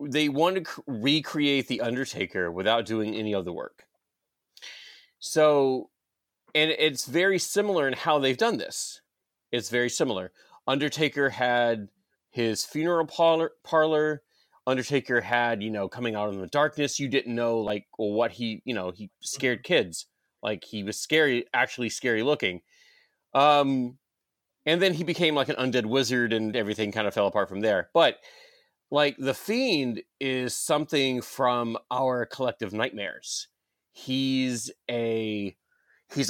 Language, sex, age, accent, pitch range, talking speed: English, male, 30-49, American, 110-150 Hz, 145 wpm